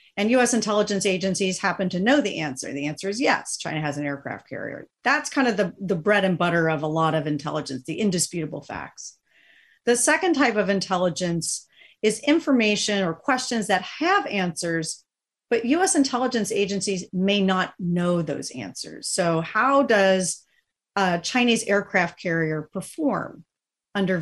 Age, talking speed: 40-59, 160 wpm